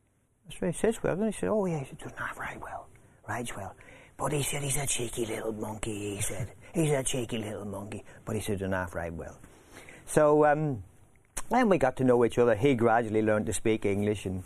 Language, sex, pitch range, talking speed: English, male, 95-125 Hz, 225 wpm